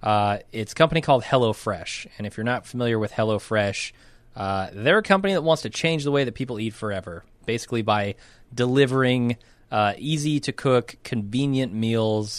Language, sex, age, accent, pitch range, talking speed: English, male, 20-39, American, 105-130 Hz, 175 wpm